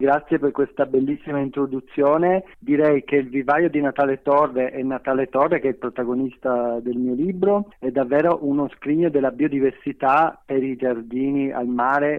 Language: Italian